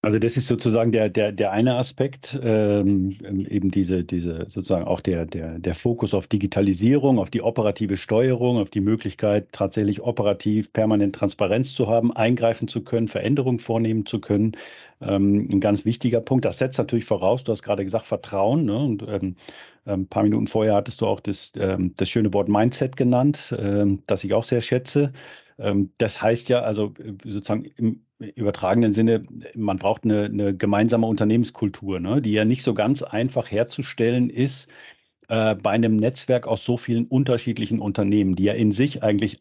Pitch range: 105-120 Hz